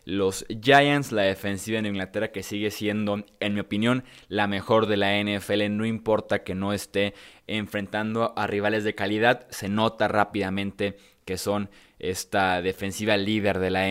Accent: Mexican